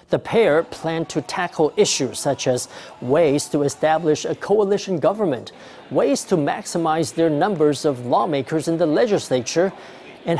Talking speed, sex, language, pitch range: 145 wpm, male, English, 150-185 Hz